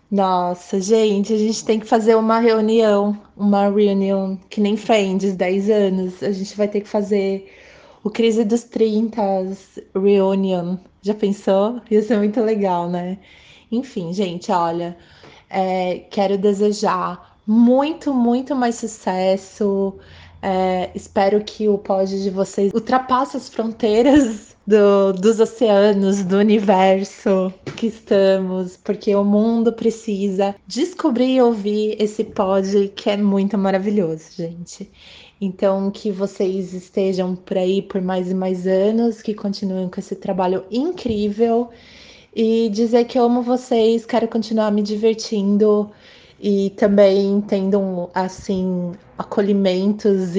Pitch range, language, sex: 190-220 Hz, Portuguese, female